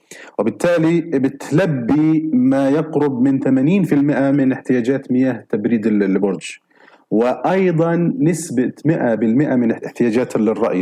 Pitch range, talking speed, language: 115-140 Hz, 95 wpm, Arabic